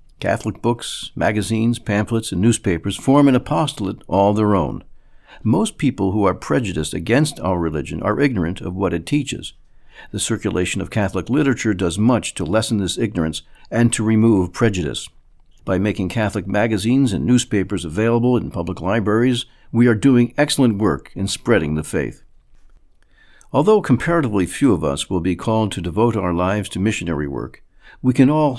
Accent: American